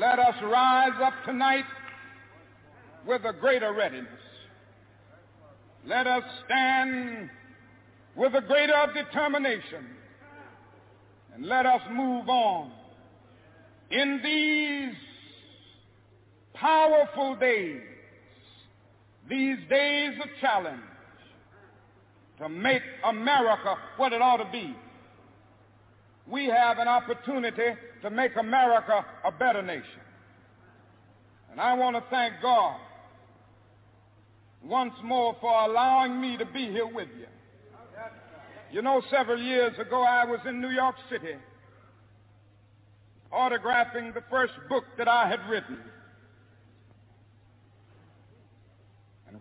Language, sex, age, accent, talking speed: English, male, 60-79, American, 100 wpm